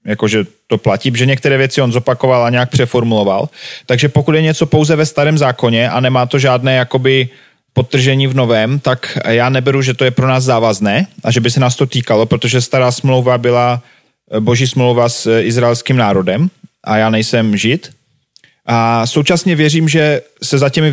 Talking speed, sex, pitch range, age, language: 180 wpm, male, 120-145 Hz, 30-49, Slovak